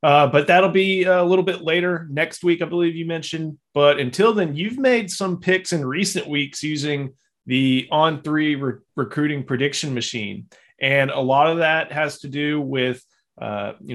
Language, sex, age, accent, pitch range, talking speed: English, male, 30-49, American, 130-160 Hz, 180 wpm